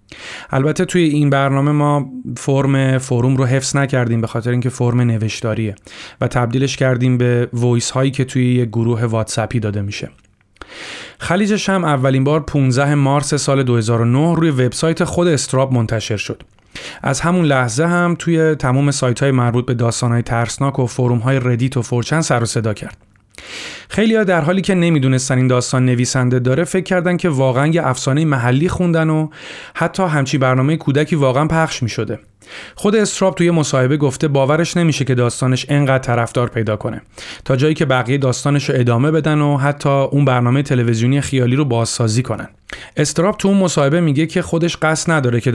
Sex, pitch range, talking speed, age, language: male, 120-155 Hz, 175 wpm, 30-49, Persian